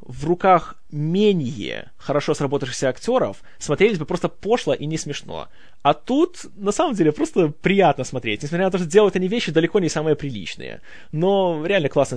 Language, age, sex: Russian, 20-39, male